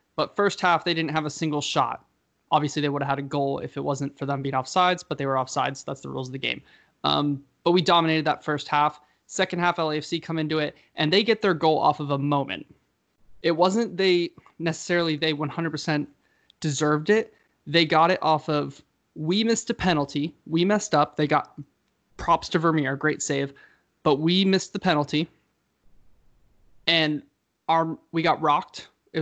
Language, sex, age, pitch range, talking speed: English, male, 20-39, 145-175 Hz, 195 wpm